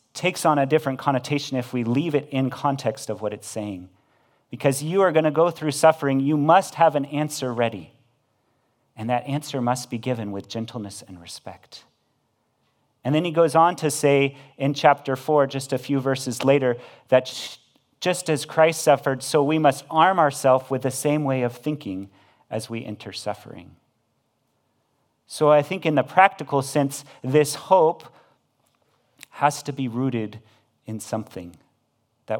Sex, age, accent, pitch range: male, 40-59, American, 115-145 Hz